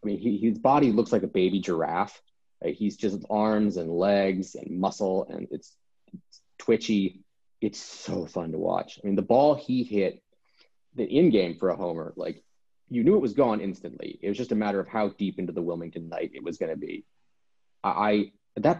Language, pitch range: English, 95-135 Hz